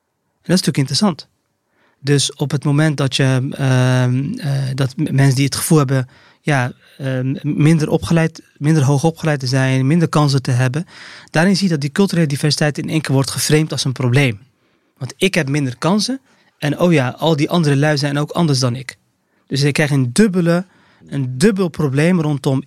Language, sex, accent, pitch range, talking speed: English, male, Dutch, 135-160 Hz, 195 wpm